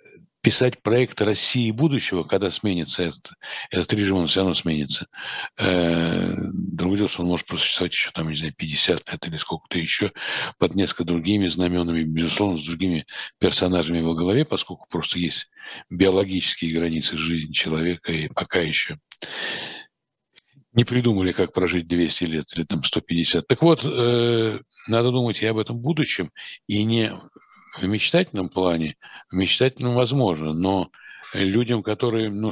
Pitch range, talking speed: 90-120 Hz, 140 wpm